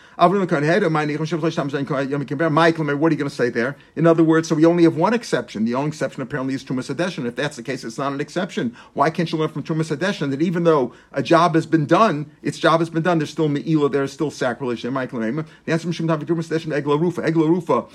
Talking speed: 220 wpm